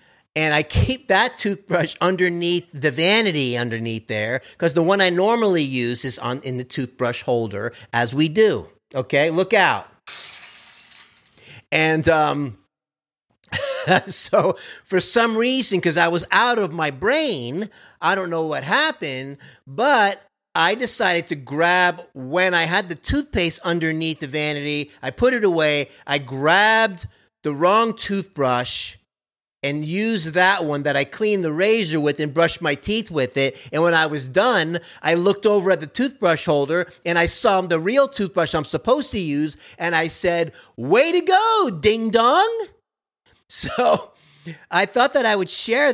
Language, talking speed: English, 160 wpm